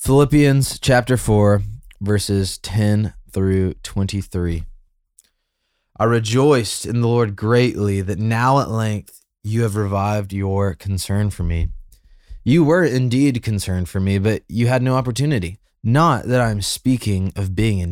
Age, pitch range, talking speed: 20-39, 90-115 Hz, 140 wpm